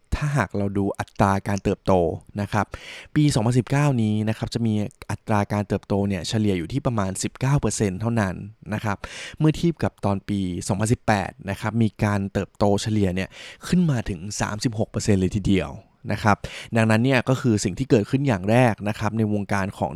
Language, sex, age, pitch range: Thai, male, 20-39, 100-120 Hz